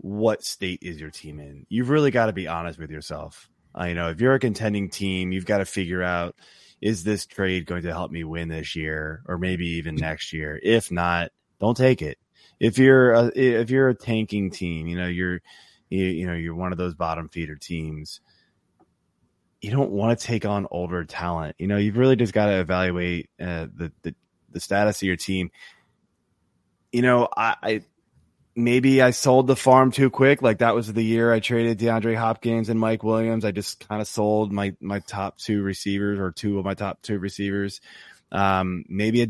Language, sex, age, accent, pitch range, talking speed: English, male, 20-39, American, 90-115 Hz, 205 wpm